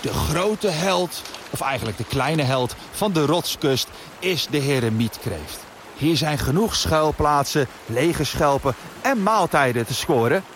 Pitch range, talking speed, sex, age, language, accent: 135-205 Hz, 135 wpm, male, 40-59, Dutch, Dutch